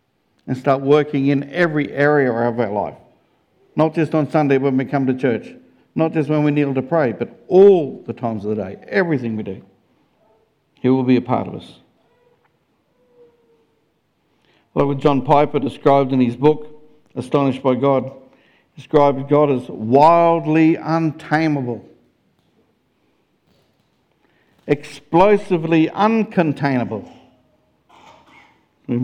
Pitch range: 125-160 Hz